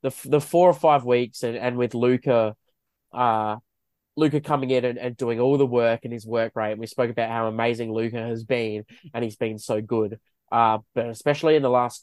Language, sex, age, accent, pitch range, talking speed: English, male, 20-39, Australian, 110-120 Hz, 220 wpm